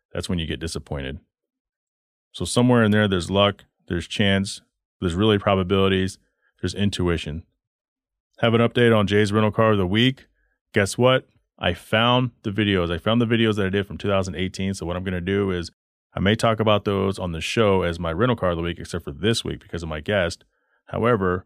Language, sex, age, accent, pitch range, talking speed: English, male, 30-49, American, 85-105 Hz, 205 wpm